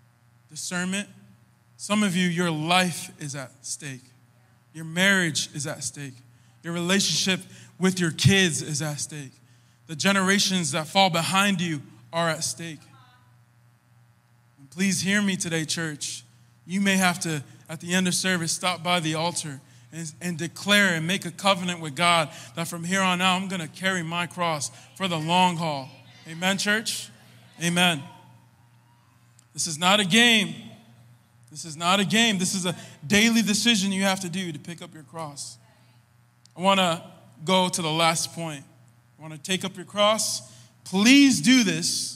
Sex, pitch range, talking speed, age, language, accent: male, 125-185 Hz, 165 wpm, 20-39, English, American